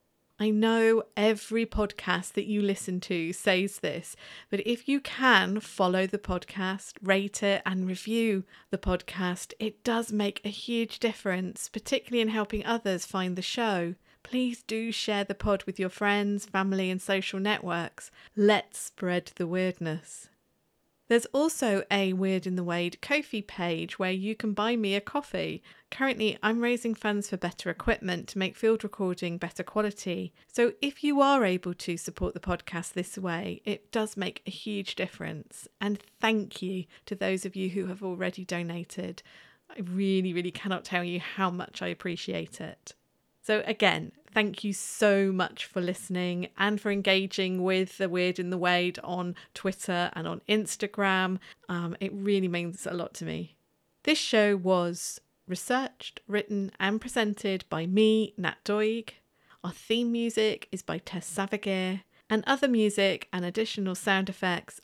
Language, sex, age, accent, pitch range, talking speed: English, female, 40-59, British, 180-215 Hz, 160 wpm